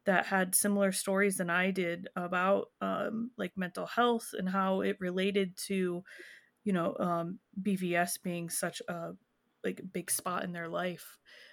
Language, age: English, 20-39